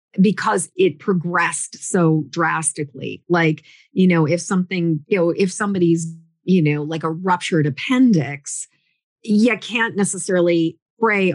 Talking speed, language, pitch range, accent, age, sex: 125 wpm, English, 160-195 Hz, American, 40-59, female